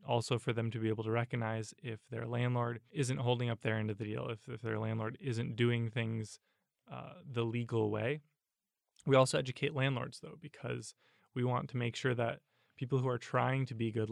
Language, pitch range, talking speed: English, 115-130 Hz, 205 wpm